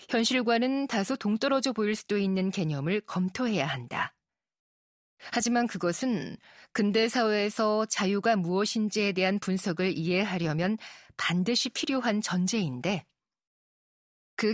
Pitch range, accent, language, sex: 180-225 Hz, native, Korean, female